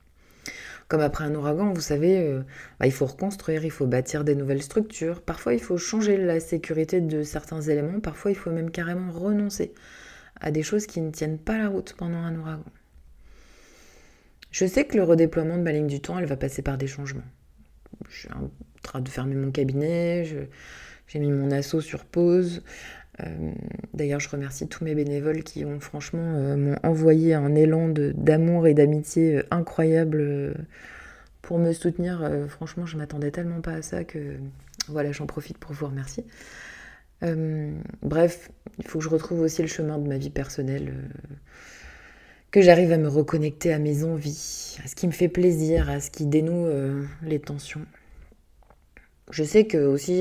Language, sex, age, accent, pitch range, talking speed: French, female, 20-39, French, 140-170 Hz, 185 wpm